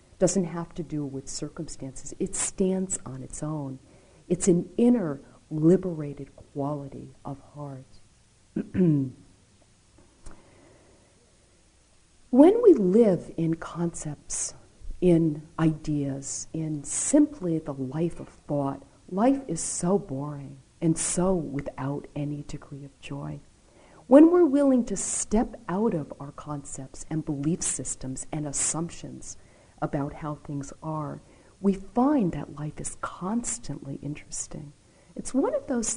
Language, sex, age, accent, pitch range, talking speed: English, female, 50-69, American, 135-180 Hz, 120 wpm